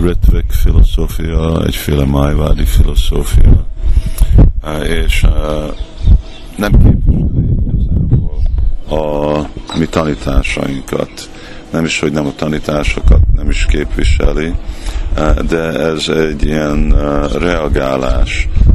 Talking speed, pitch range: 75 wpm, 70-80 Hz